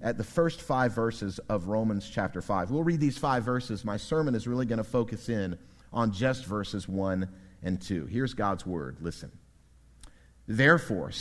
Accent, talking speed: American, 170 wpm